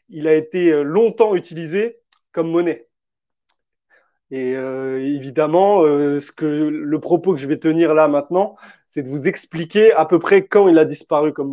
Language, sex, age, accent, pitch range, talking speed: French, male, 20-39, French, 150-195 Hz, 170 wpm